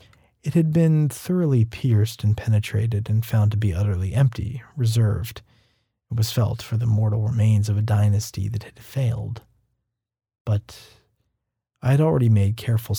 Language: English